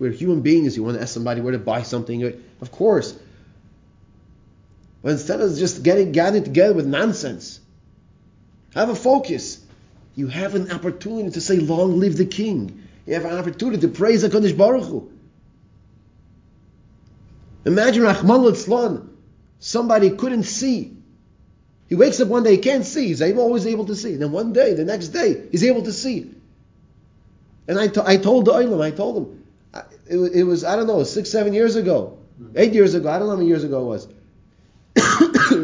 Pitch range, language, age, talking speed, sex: 145-220 Hz, English, 30-49, 175 wpm, male